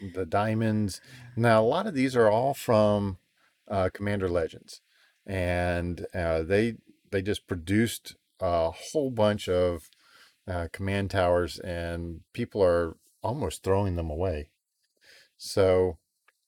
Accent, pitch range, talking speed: American, 90-105 Hz, 125 wpm